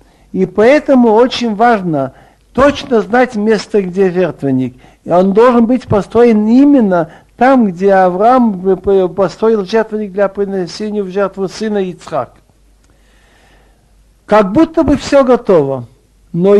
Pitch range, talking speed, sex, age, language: 180-235 Hz, 115 wpm, male, 60-79, Russian